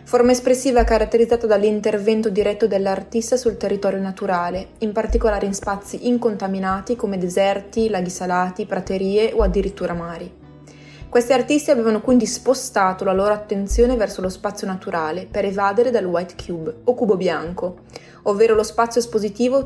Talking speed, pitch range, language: 140 wpm, 185-225 Hz, Italian